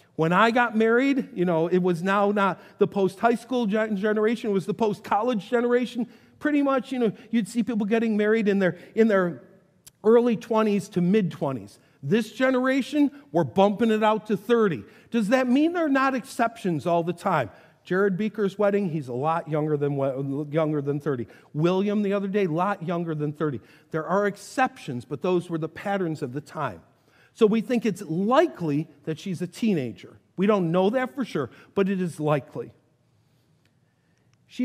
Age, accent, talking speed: 50-69, American, 180 wpm